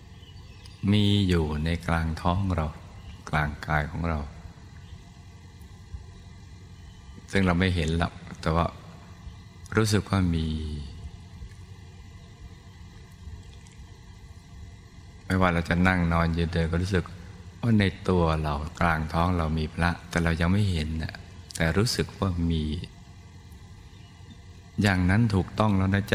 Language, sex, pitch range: Thai, male, 85-95 Hz